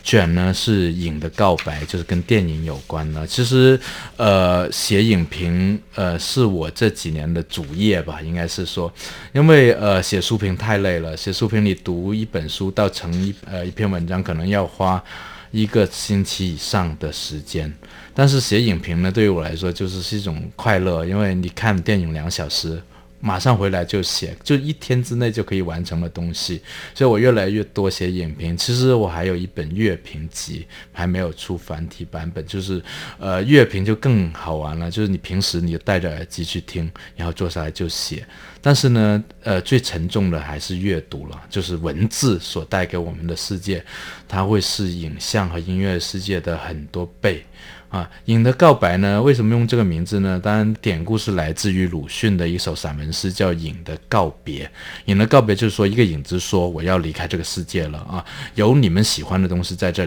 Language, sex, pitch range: Chinese, male, 85-105 Hz